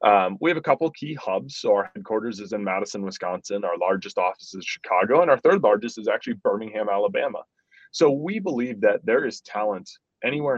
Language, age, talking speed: English, 20-39, 200 wpm